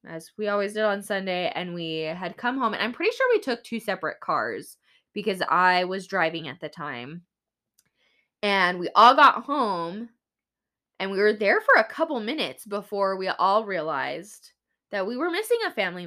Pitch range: 175-220 Hz